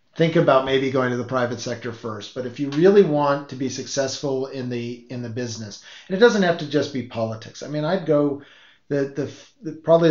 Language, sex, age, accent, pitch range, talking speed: English, male, 40-59, American, 120-145 Hz, 225 wpm